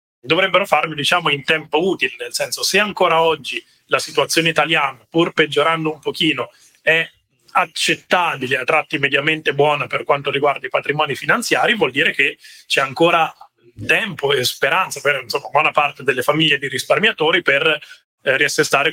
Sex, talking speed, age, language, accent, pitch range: male, 155 wpm, 30-49, Italian, native, 140-170 Hz